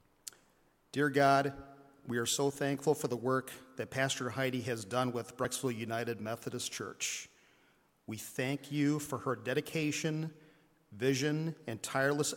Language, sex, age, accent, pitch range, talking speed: English, male, 40-59, American, 120-140 Hz, 135 wpm